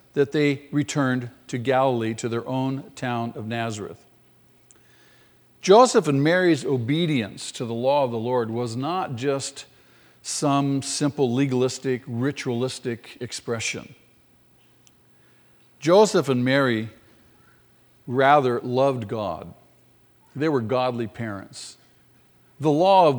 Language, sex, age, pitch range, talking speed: English, male, 50-69, 115-140 Hz, 110 wpm